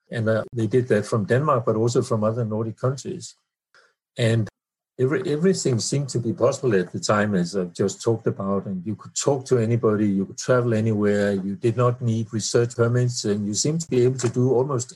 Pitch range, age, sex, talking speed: 105-130 Hz, 60-79, male, 205 wpm